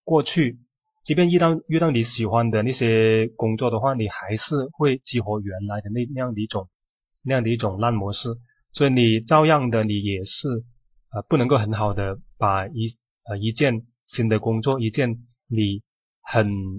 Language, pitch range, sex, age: Chinese, 110-135 Hz, male, 20-39